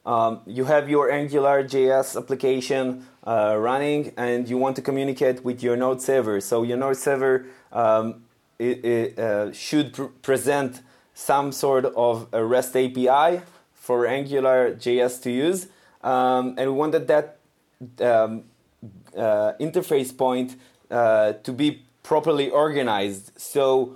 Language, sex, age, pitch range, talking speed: English, male, 20-39, 120-140 Hz, 140 wpm